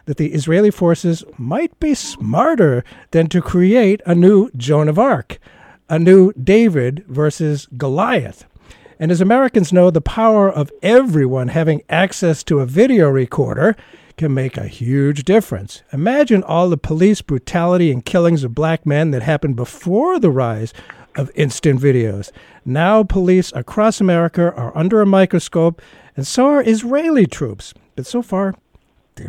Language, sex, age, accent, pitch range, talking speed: English, male, 50-69, American, 140-200 Hz, 150 wpm